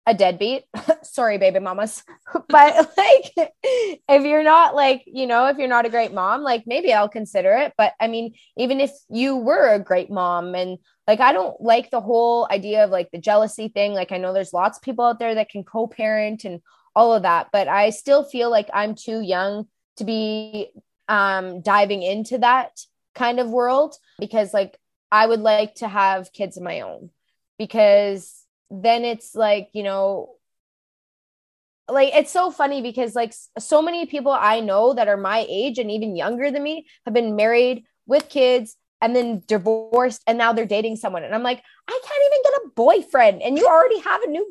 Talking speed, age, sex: 195 wpm, 20-39, female